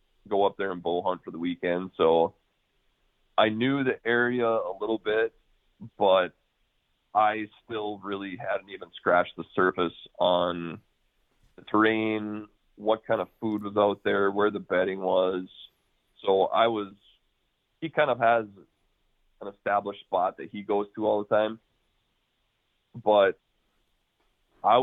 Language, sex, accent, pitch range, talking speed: English, male, American, 95-115 Hz, 145 wpm